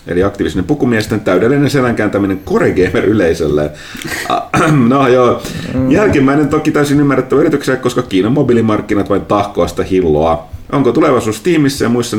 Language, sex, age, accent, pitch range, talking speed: Finnish, male, 30-49, native, 95-125 Hz, 120 wpm